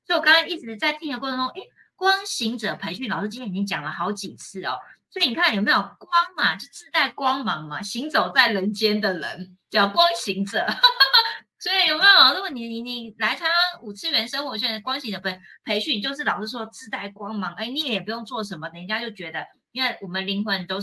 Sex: female